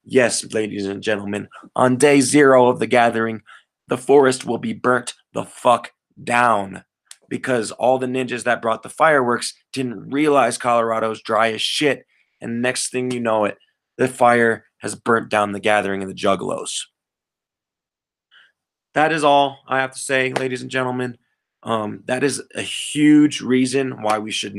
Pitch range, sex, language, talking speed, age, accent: 115-140 Hz, male, English, 165 wpm, 20-39, American